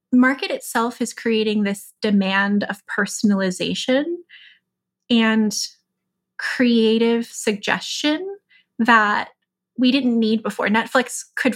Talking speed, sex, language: 95 wpm, female, English